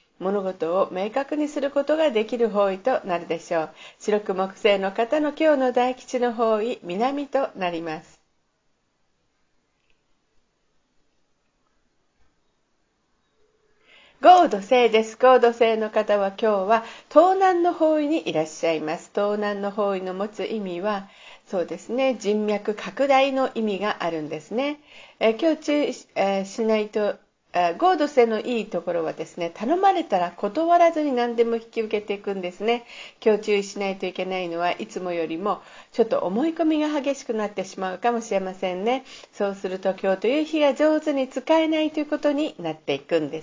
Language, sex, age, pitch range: Japanese, female, 50-69, 195-275 Hz